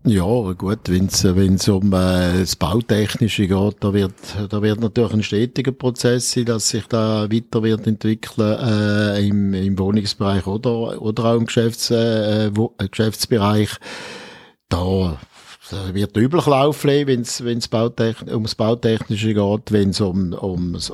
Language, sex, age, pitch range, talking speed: German, male, 50-69, 95-115 Hz, 150 wpm